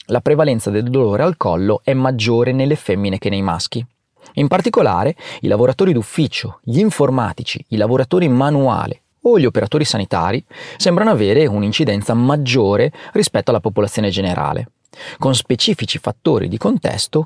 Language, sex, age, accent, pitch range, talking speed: Italian, male, 30-49, native, 110-155 Hz, 140 wpm